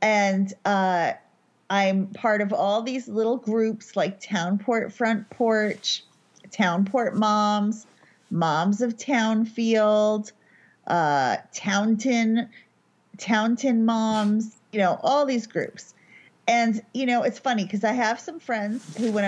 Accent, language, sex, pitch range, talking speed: American, English, female, 195-245 Hz, 120 wpm